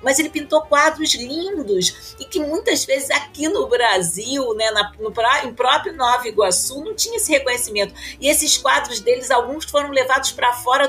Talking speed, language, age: 170 wpm, Portuguese, 40-59